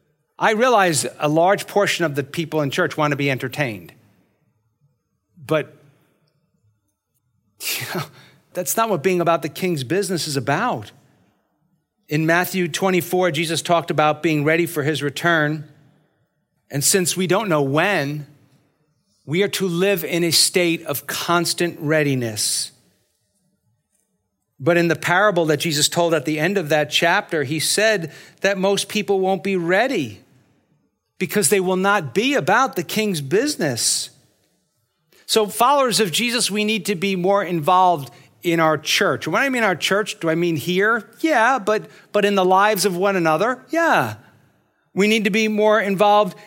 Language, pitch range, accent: English, 150-205 Hz, American